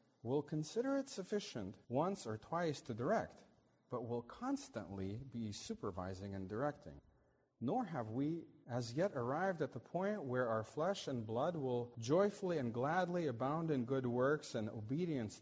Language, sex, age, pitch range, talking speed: English, male, 40-59, 120-175 Hz, 155 wpm